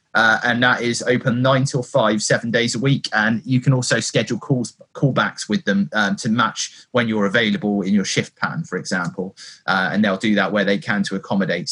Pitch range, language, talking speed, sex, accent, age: 110-140 Hz, English, 220 wpm, male, British, 30-49